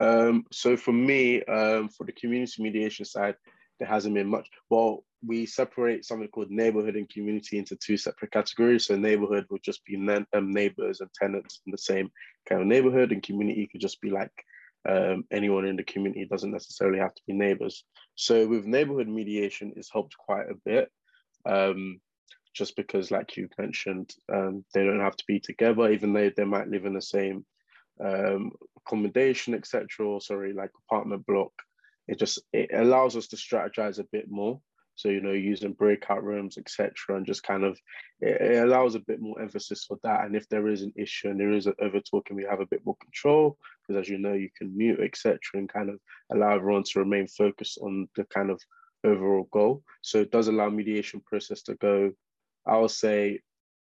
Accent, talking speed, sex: British, 195 wpm, male